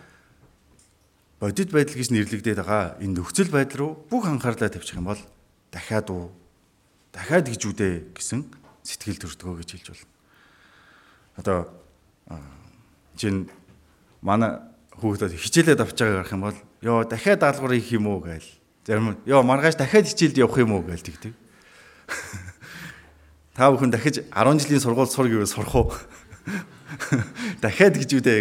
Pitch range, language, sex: 95-135 Hz, English, male